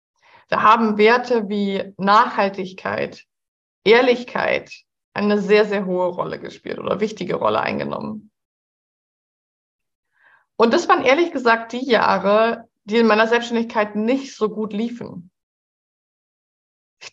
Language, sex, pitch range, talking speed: German, female, 200-245 Hz, 110 wpm